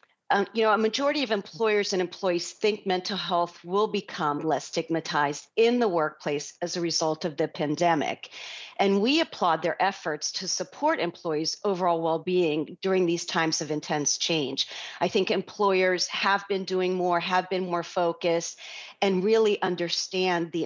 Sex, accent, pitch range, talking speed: female, American, 170-205 Hz, 165 wpm